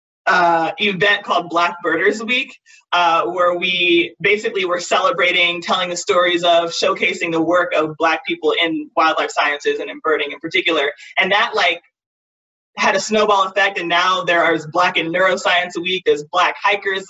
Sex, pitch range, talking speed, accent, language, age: male, 170-225 Hz, 170 wpm, American, English, 20-39